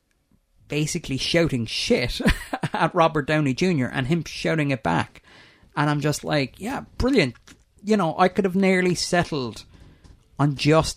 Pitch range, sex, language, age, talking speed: 125-165 Hz, male, English, 30-49, 150 wpm